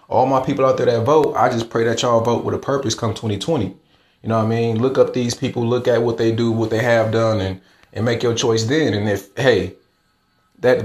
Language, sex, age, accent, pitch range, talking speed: English, male, 20-39, American, 105-130 Hz, 255 wpm